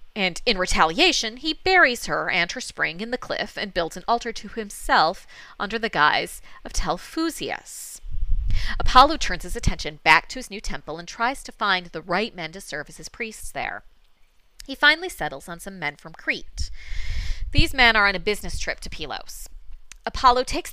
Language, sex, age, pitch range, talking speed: English, female, 30-49, 175-260 Hz, 185 wpm